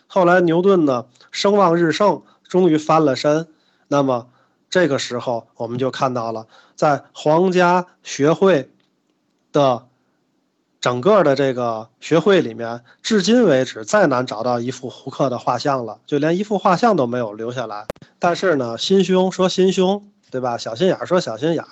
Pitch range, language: 130-185 Hz, Chinese